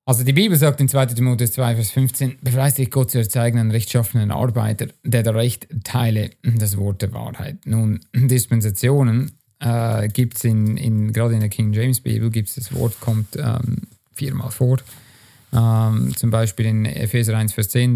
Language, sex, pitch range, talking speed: German, male, 110-125 Hz, 175 wpm